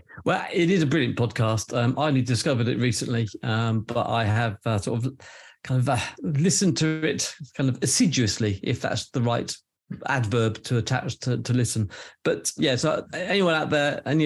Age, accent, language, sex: 50-69, British, English, male